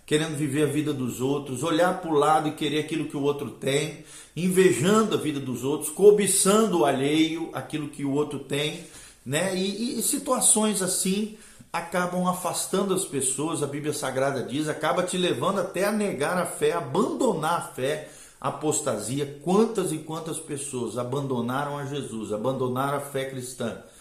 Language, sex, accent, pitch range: Portuguese, male, Brazilian, 125-175 Hz